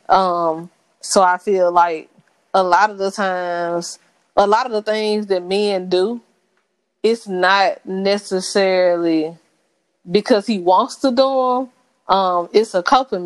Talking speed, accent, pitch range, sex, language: 140 wpm, American, 180-210 Hz, female, English